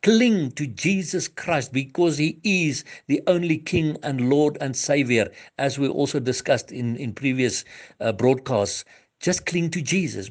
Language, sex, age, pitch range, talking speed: English, male, 60-79, 120-160 Hz, 155 wpm